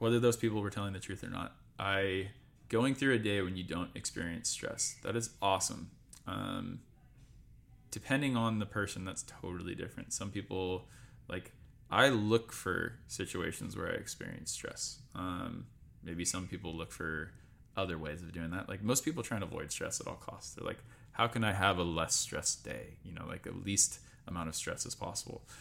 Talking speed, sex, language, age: 190 wpm, male, English, 20-39